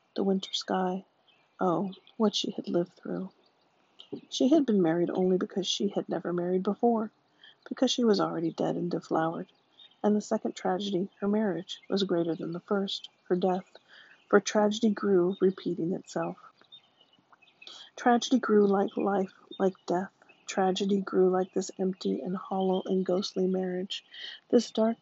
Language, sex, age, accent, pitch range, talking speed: English, female, 40-59, American, 185-215 Hz, 150 wpm